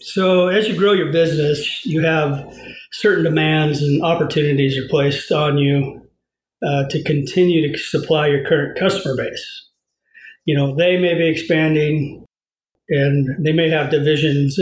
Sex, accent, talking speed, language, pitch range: male, American, 150 wpm, English, 150-170 Hz